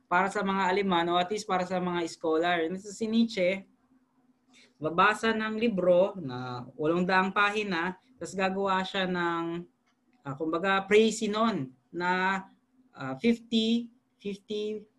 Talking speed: 130 wpm